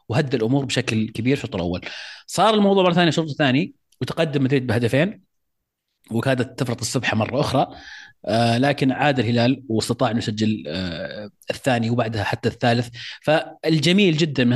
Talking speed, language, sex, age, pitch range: 145 wpm, Arabic, male, 30-49, 110-135 Hz